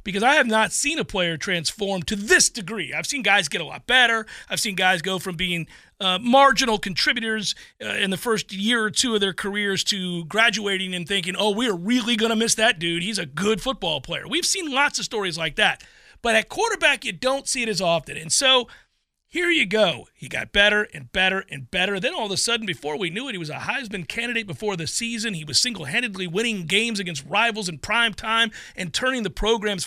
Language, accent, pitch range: English, American, 185-235 Hz